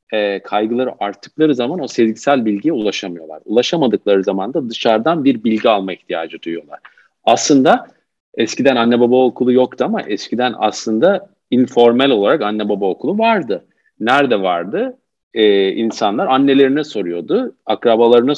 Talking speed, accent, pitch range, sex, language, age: 120 wpm, native, 110-140 Hz, male, Turkish, 50-69